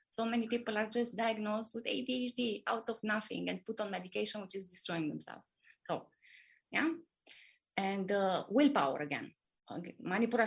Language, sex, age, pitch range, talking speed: English, female, 30-49, 185-240 Hz, 150 wpm